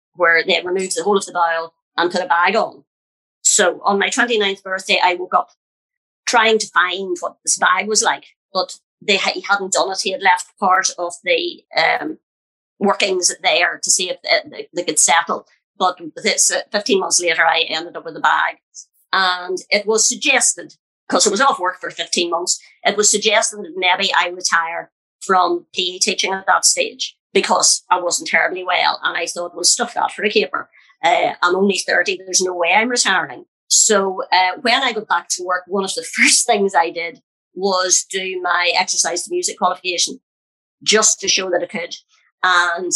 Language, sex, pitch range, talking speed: English, female, 175-220 Hz, 190 wpm